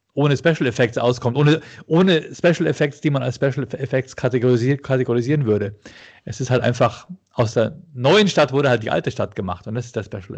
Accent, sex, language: German, male, German